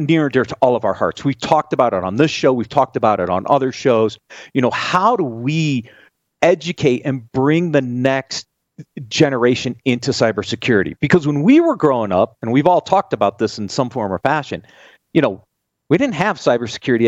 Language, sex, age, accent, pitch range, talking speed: English, male, 40-59, American, 120-165 Hz, 205 wpm